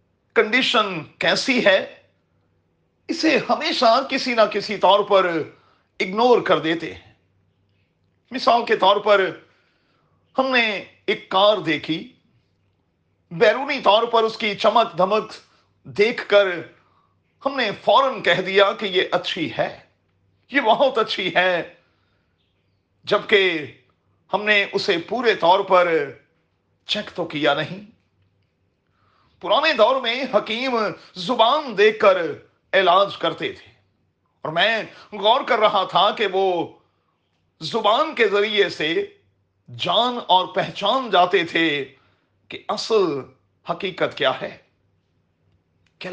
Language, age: Urdu, 40-59